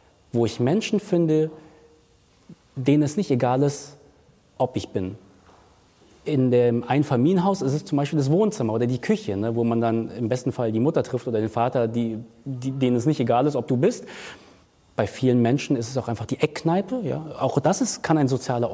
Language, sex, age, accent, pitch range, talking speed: German, male, 30-49, German, 120-165 Hz, 185 wpm